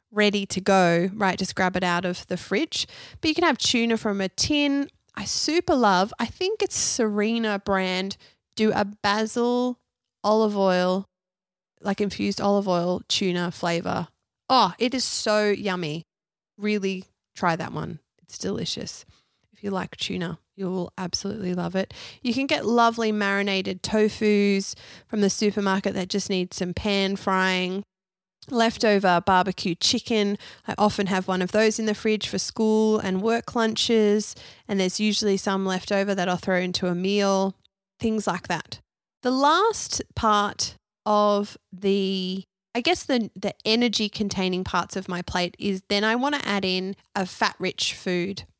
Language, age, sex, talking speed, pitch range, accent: English, 20-39, female, 160 wpm, 190-220 Hz, Australian